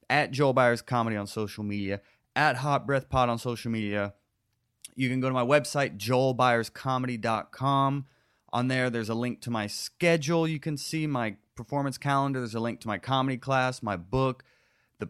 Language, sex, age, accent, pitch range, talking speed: English, male, 30-49, American, 110-140 Hz, 180 wpm